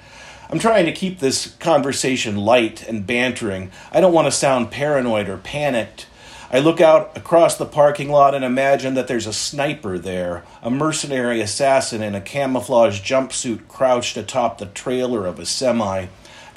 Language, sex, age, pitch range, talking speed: English, male, 40-59, 115-145 Hz, 165 wpm